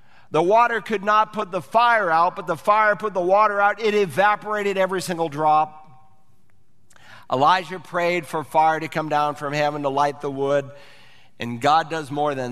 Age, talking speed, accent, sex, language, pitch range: 50-69, 180 wpm, American, male, English, 140-190 Hz